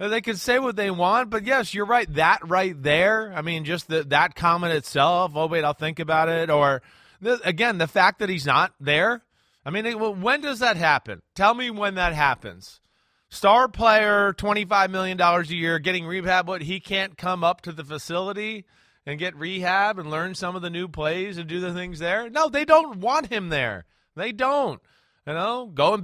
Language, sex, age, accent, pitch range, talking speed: English, male, 30-49, American, 155-205 Hz, 200 wpm